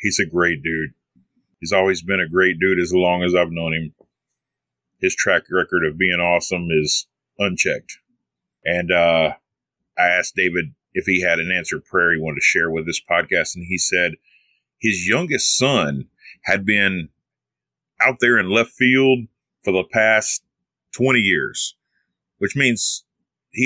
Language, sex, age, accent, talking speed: English, male, 40-59, American, 160 wpm